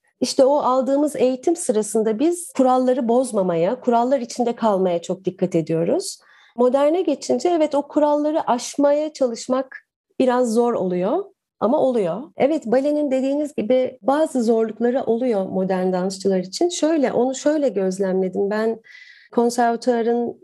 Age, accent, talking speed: 40-59, native, 125 wpm